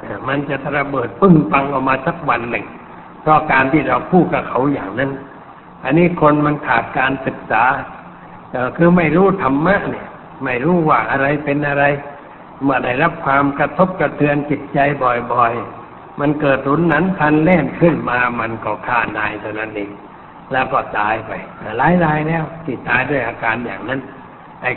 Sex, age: male, 60-79